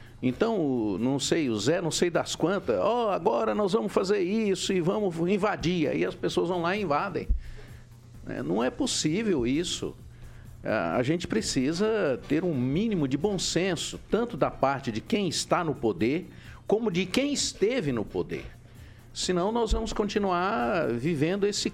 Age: 50-69